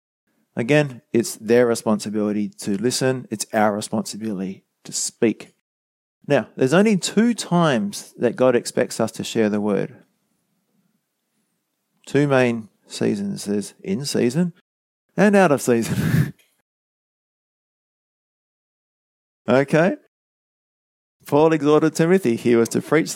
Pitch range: 110-155 Hz